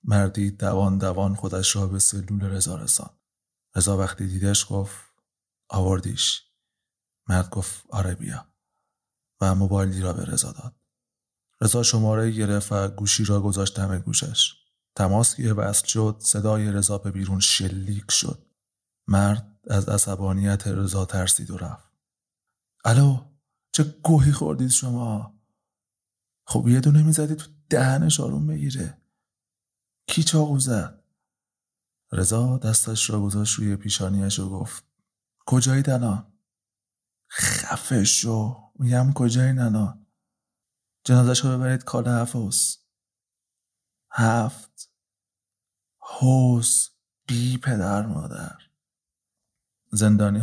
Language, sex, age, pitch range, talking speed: Persian, male, 30-49, 100-120 Hz, 105 wpm